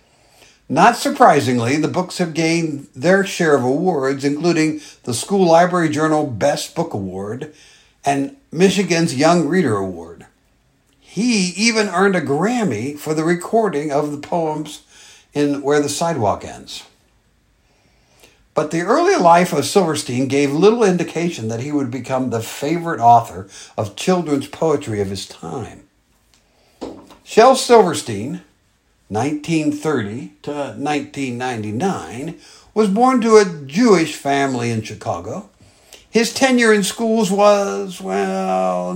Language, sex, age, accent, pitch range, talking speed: English, male, 60-79, American, 135-185 Hz, 125 wpm